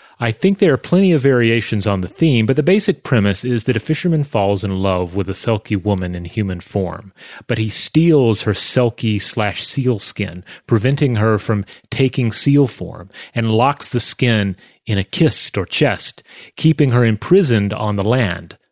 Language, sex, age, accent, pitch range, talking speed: English, male, 30-49, American, 105-135 Hz, 175 wpm